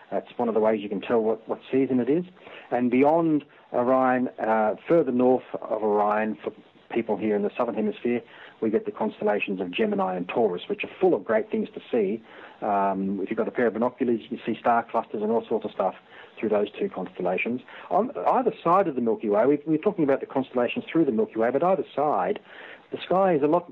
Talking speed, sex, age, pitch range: 230 wpm, male, 40-59, 110-150 Hz